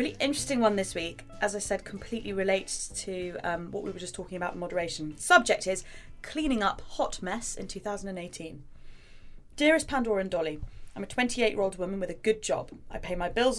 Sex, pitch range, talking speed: female, 180-235 Hz, 205 wpm